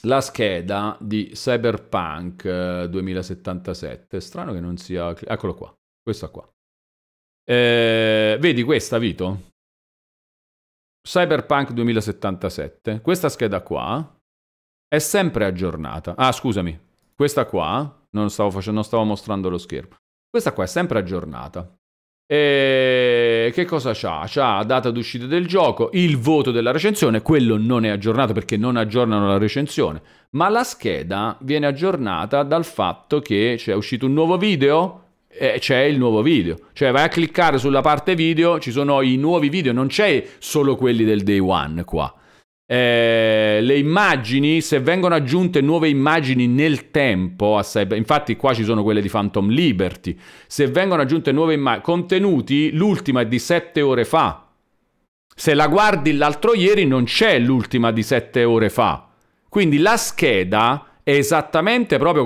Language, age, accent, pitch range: Italian, 40-59, native, 105-155 Hz